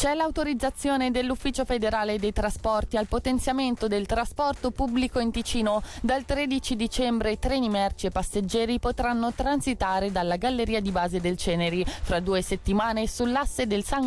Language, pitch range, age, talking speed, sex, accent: Italian, 190-250 Hz, 20-39, 150 wpm, female, native